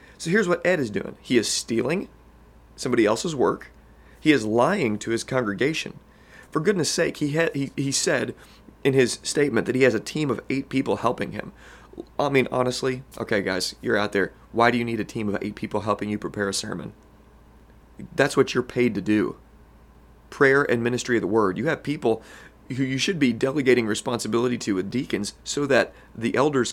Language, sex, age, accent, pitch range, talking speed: English, male, 30-49, American, 100-125 Hz, 200 wpm